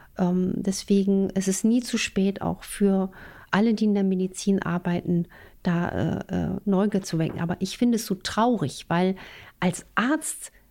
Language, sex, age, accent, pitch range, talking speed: German, female, 50-69, German, 185-230 Hz, 165 wpm